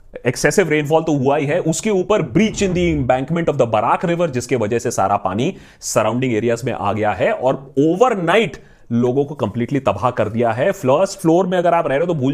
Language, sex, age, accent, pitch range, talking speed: Hindi, male, 30-49, native, 130-185 Hz, 120 wpm